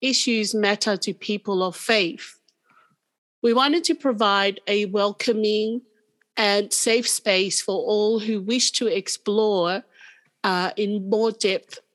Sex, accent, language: female, British, English